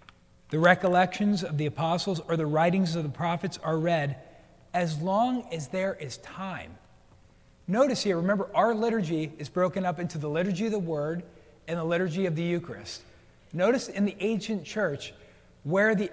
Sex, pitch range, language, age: male, 160-200 Hz, English, 40-59